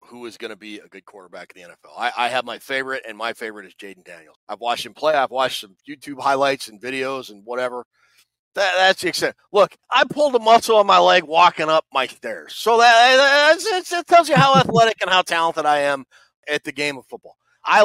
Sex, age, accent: male, 40-59, American